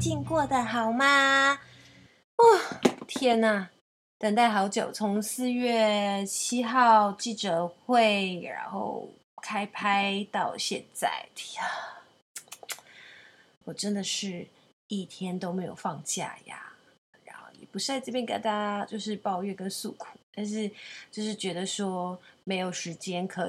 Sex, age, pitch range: female, 20-39, 175-210 Hz